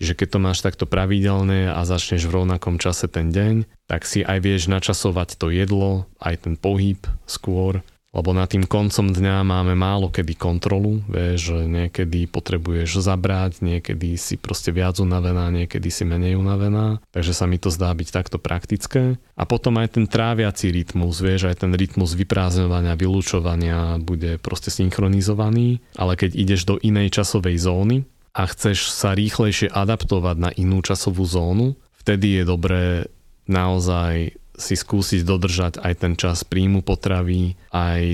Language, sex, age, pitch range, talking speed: Slovak, male, 30-49, 90-100 Hz, 155 wpm